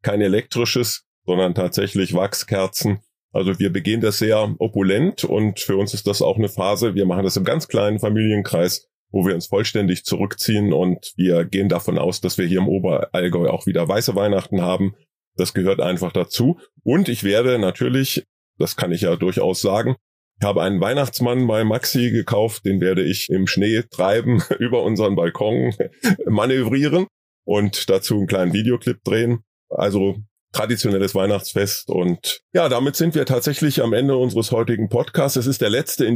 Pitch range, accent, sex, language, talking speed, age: 95-120 Hz, German, male, German, 170 wpm, 30-49